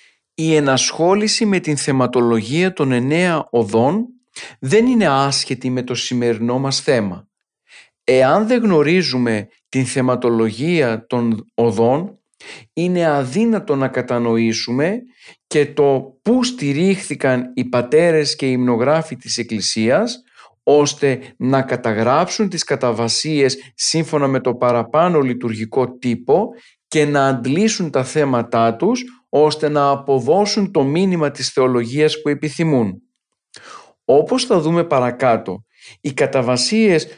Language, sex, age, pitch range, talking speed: Greek, male, 40-59, 125-160 Hz, 115 wpm